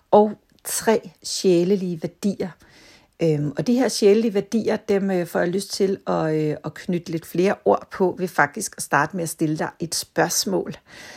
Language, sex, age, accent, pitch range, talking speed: Danish, female, 60-79, native, 155-210 Hz, 185 wpm